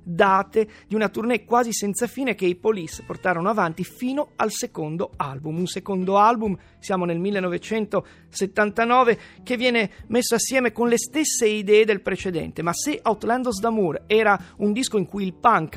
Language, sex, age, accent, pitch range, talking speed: Italian, male, 40-59, native, 185-235 Hz, 165 wpm